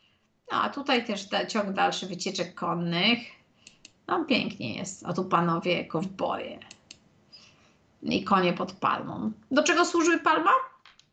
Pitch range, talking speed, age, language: 195-275 Hz, 140 wpm, 30-49, Polish